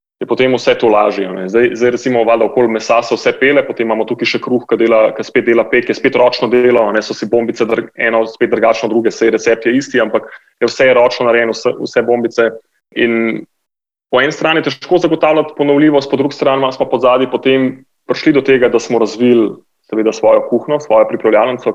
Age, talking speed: 30-49, 200 wpm